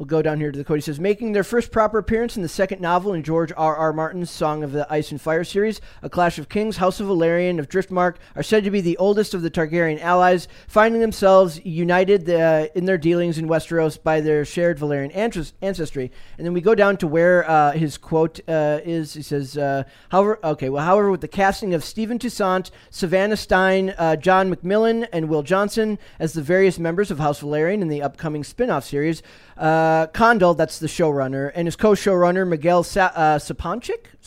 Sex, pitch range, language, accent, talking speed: male, 155-195 Hz, English, American, 210 wpm